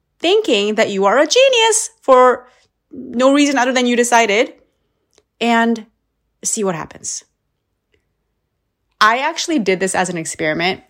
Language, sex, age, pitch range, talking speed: English, female, 30-49, 170-240 Hz, 130 wpm